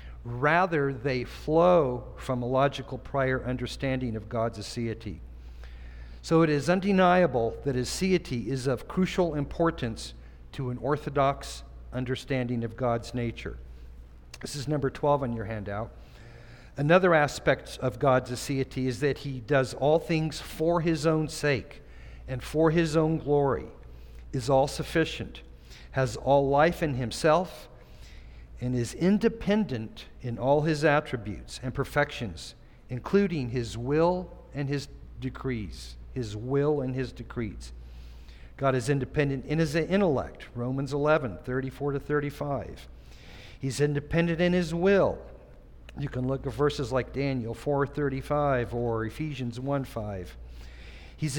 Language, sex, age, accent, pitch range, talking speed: English, male, 50-69, American, 115-150 Hz, 130 wpm